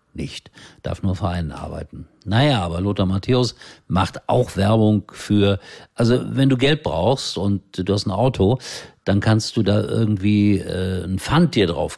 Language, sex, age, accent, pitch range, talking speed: German, male, 50-69, German, 90-125 Hz, 165 wpm